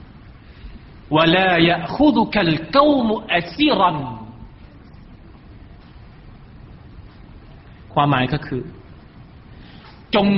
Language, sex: Thai, male